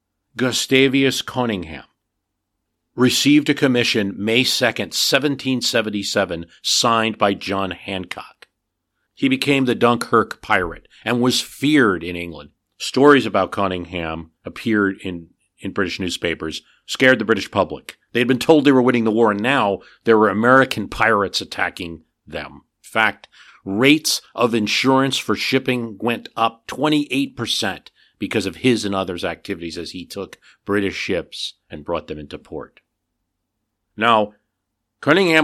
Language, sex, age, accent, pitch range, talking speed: English, male, 50-69, American, 95-125 Hz, 130 wpm